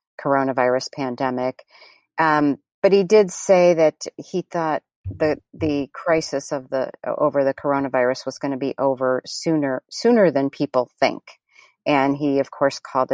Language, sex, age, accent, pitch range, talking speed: English, female, 50-69, American, 130-160 Hz, 150 wpm